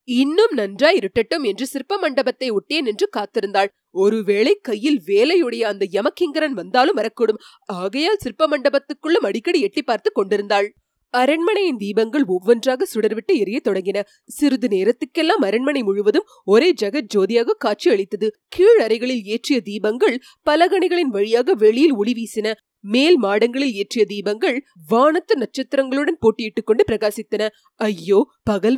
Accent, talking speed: native, 85 wpm